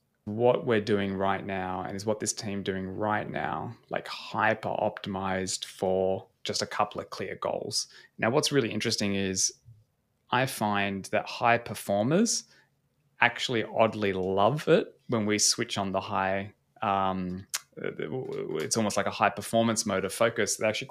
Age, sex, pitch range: 20-39, male, 95-110 Hz